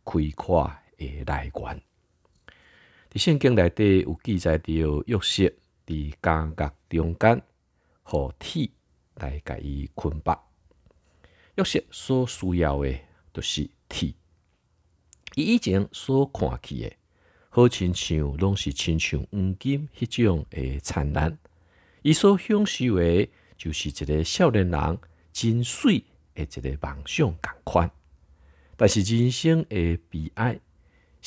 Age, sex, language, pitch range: 50-69, male, Chinese, 75-100 Hz